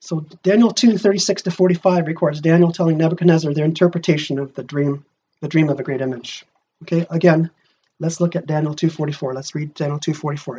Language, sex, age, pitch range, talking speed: English, male, 30-49, 150-190 Hz, 175 wpm